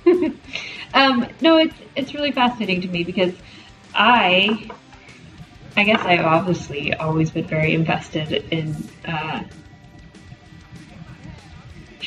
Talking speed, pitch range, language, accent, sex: 105 wpm, 170-195 Hz, English, American, female